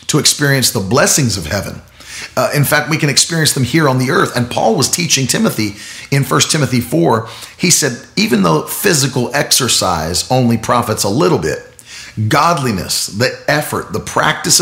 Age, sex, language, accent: 40-59, male, English, American